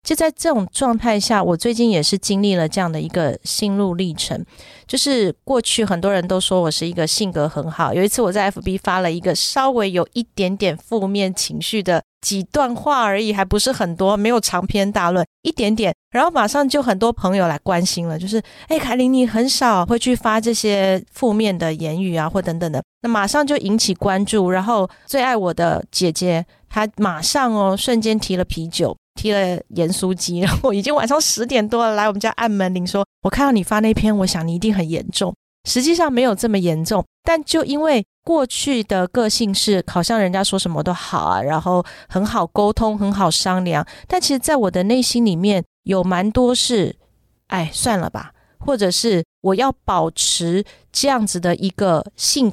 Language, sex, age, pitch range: Chinese, female, 30-49, 180-235 Hz